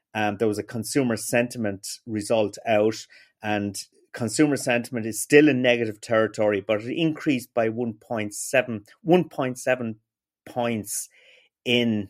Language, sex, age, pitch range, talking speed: English, male, 30-49, 110-125 Hz, 120 wpm